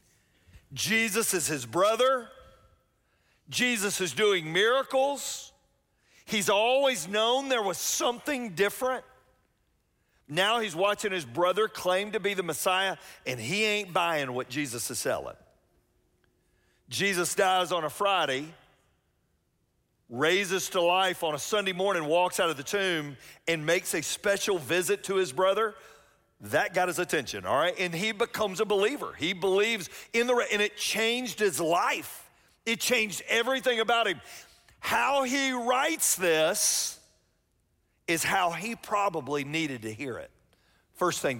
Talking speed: 140 wpm